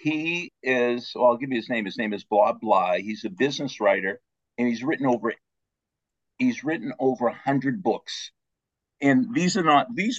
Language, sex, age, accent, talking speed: English, male, 50-69, American, 190 wpm